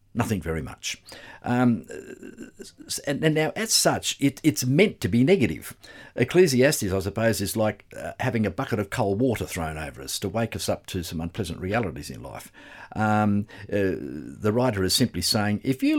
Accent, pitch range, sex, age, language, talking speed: Australian, 90-125 Hz, male, 50-69, English, 180 wpm